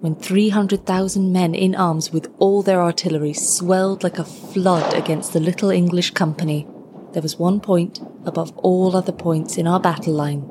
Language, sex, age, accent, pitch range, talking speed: English, female, 30-49, British, 160-190 Hz, 170 wpm